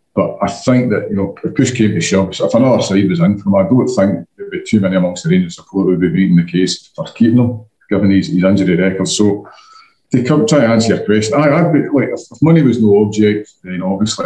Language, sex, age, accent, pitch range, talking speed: English, male, 40-59, British, 90-115 Hz, 260 wpm